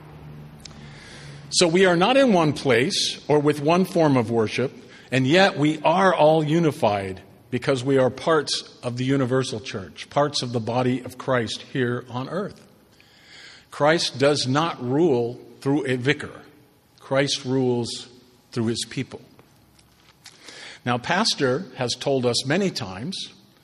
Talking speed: 140 wpm